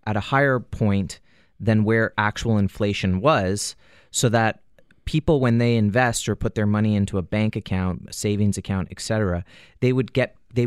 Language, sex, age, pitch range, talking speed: English, male, 30-49, 100-115 Hz, 155 wpm